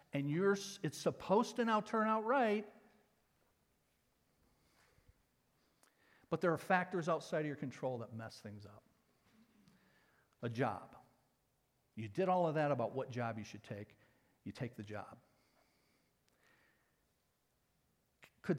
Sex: male